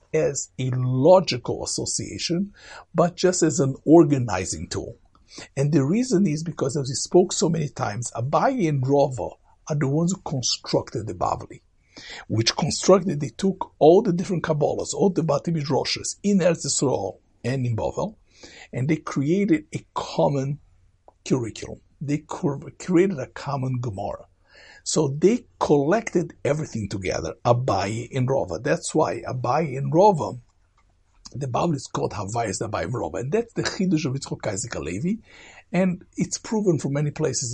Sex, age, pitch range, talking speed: male, 60-79, 125-170 Hz, 145 wpm